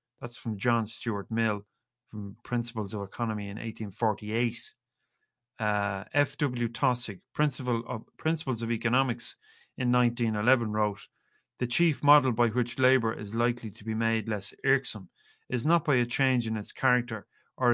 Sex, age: male, 30-49